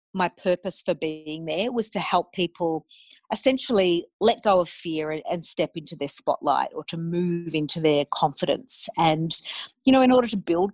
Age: 40-59